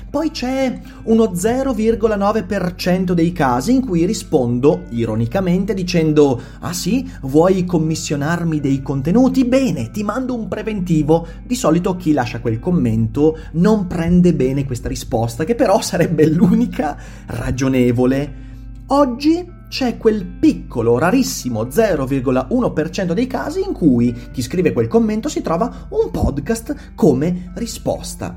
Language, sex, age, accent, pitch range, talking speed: Italian, male, 30-49, native, 125-200 Hz, 125 wpm